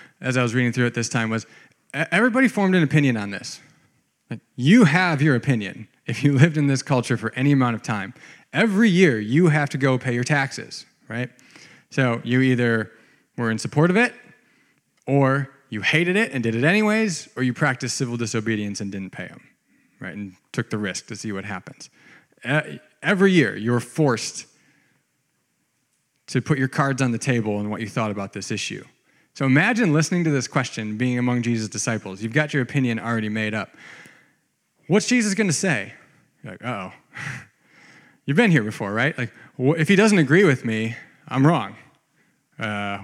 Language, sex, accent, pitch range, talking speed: English, male, American, 115-155 Hz, 185 wpm